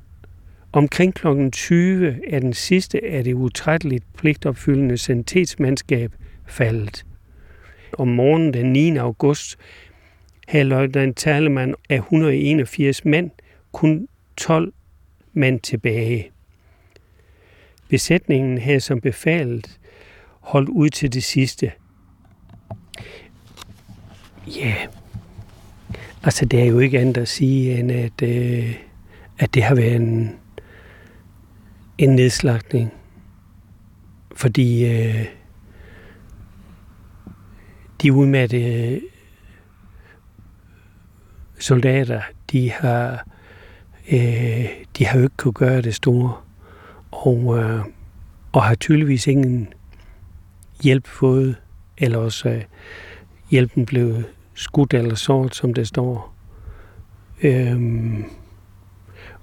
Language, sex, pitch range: Danish, male, 95-130 Hz